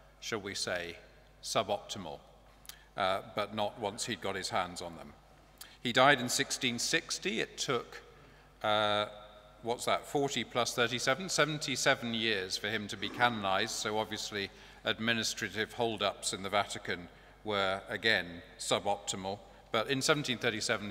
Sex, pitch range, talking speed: male, 100-115 Hz, 130 wpm